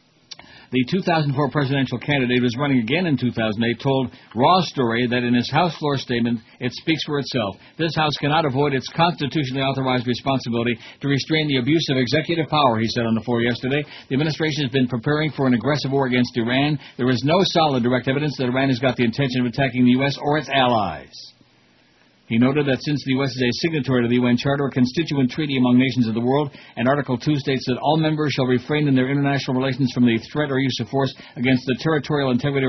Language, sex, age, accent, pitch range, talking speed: English, male, 60-79, American, 125-150 Hz, 220 wpm